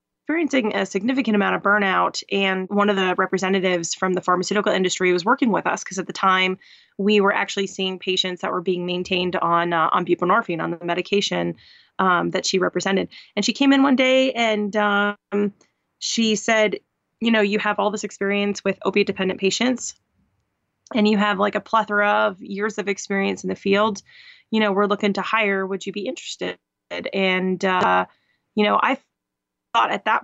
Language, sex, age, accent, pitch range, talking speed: English, female, 20-39, American, 185-215 Hz, 190 wpm